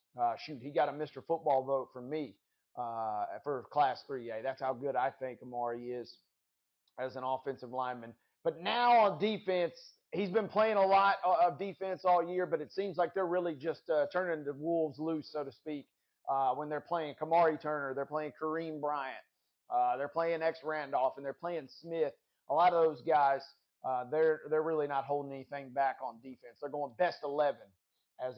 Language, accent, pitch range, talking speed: English, American, 140-190 Hz, 195 wpm